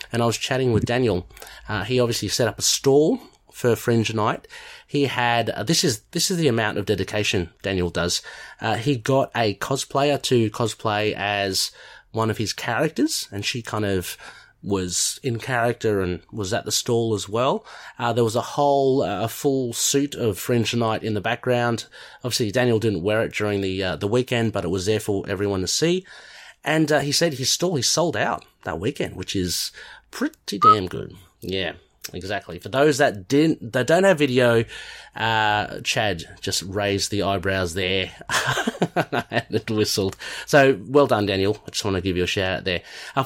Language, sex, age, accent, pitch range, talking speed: English, male, 30-49, Australian, 100-135 Hz, 195 wpm